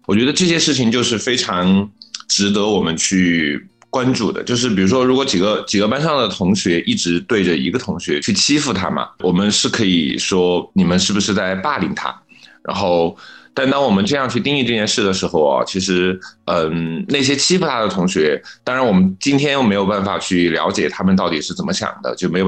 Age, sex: 20-39, male